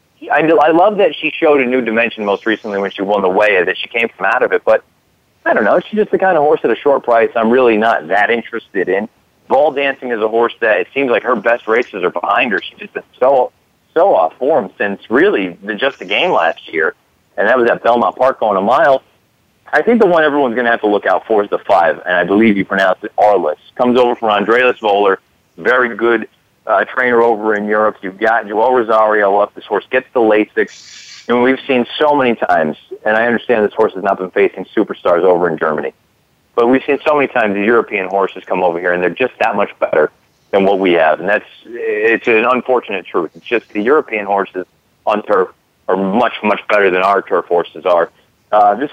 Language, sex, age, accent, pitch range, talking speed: English, male, 40-59, American, 100-130 Hz, 235 wpm